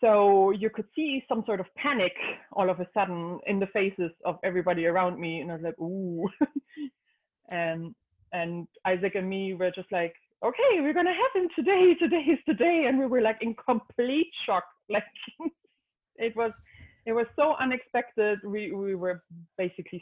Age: 30-49